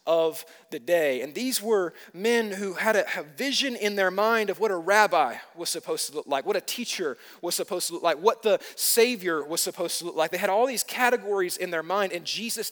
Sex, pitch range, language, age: male, 160-225 Hz, English, 30-49